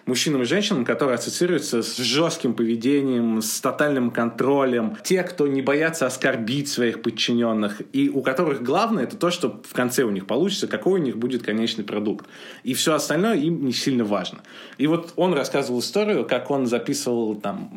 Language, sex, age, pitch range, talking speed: Russian, male, 20-39, 115-145 Hz, 175 wpm